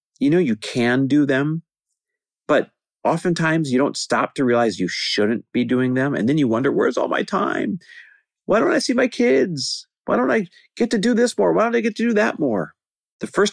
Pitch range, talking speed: 100-160 Hz, 220 wpm